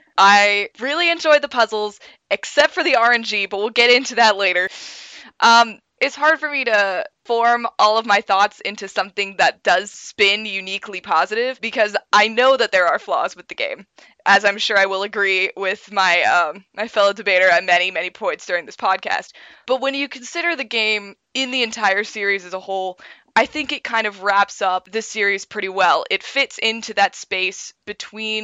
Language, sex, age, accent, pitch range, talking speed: English, female, 20-39, American, 190-230 Hz, 195 wpm